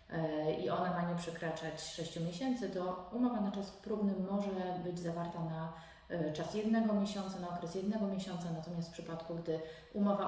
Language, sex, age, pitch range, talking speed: Polish, female, 30-49, 170-200 Hz, 165 wpm